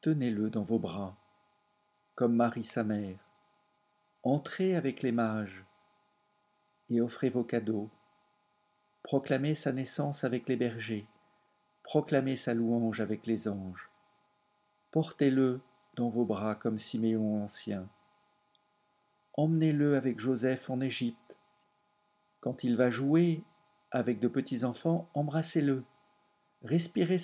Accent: French